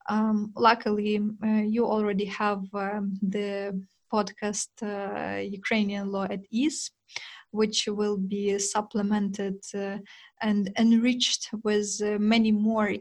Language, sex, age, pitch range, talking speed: Ukrainian, female, 20-39, 205-220 Hz, 120 wpm